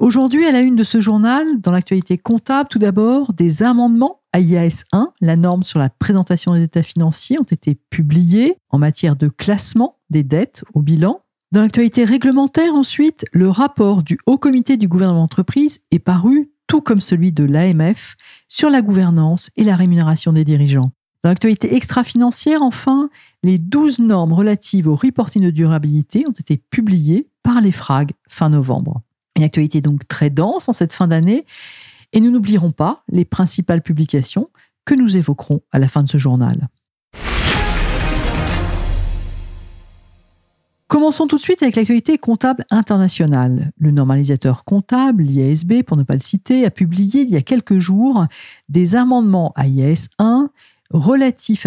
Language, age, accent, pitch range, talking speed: French, 50-69, French, 155-240 Hz, 160 wpm